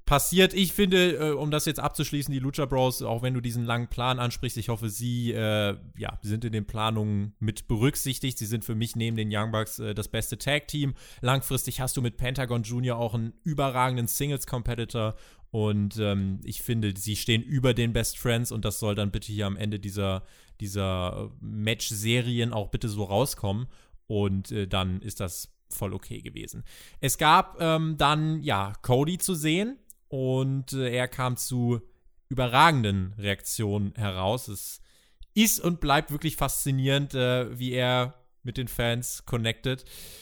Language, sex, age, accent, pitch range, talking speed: German, male, 20-39, German, 110-135 Hz, 165 wpm